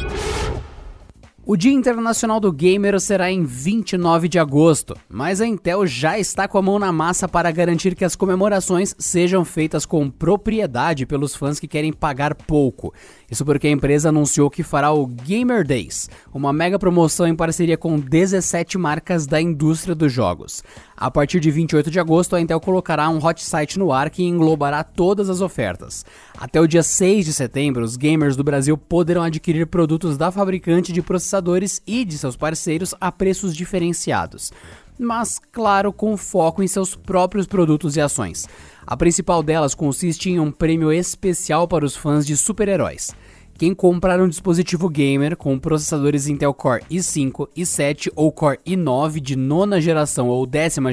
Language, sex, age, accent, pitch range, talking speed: Portuguese, male, 20-39, Brazilian, 145-185 Hz, 165 wpm